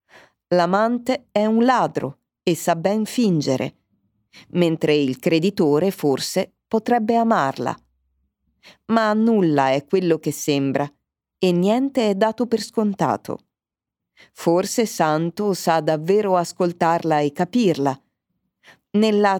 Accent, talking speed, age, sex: native, 105 wpm, 40-59, female